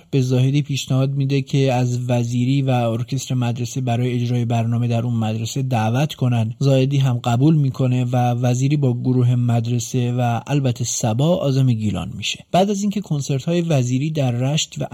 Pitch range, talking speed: 120-145 Hz, 170 wpm